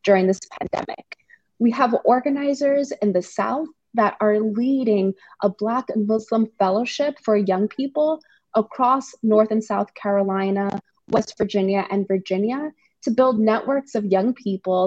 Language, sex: English, female